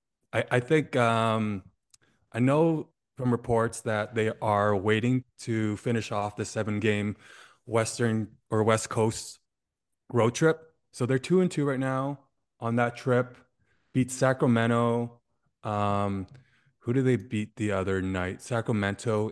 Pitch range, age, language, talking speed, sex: 105-125 Hz, 20-39, English, 135 wpm, male